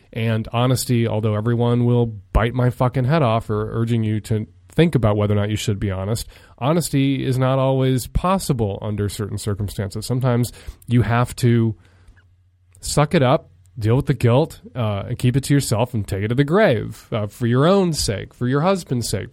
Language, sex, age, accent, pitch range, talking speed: English, male, 30-49, American, 105-135 Hz, 195 wpm